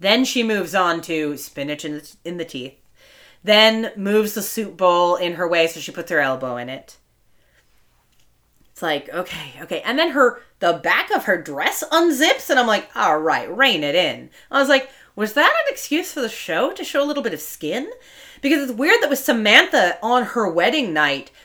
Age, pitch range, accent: 30-49, 175-270 Hz, American